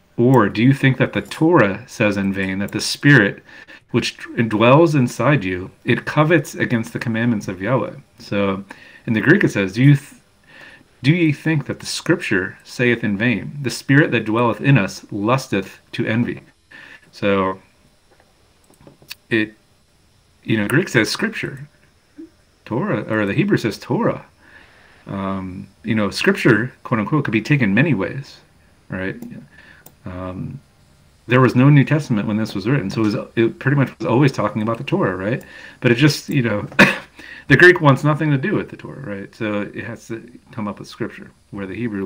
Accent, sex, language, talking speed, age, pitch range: American, male, English, 180 wpm, 40-59, 100-135 Hz